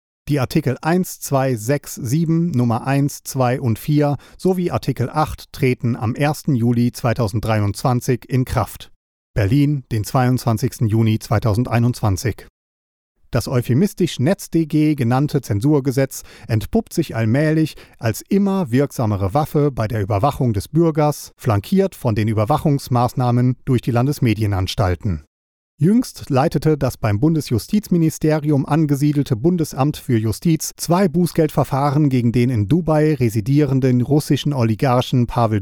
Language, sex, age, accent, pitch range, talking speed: German, male, 40-59, German, 120-155 Hz, 115 wpm